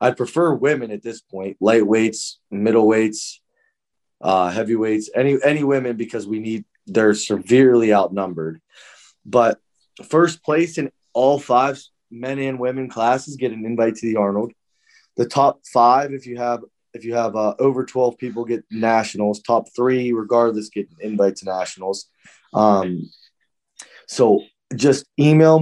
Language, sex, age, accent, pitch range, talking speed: English, male, 20-39, American, 105-130 Hz, 145 wpm